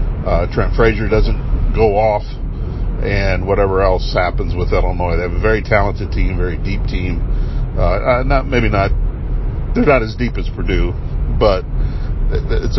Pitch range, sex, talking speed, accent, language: 85-105 Hz, male, 155 wpm, American, English